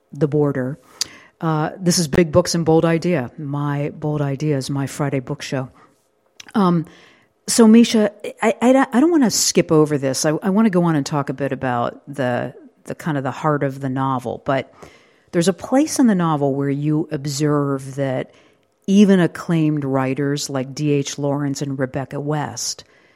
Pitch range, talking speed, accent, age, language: 140-180 Hz, 175 wpm, American, 50-69, English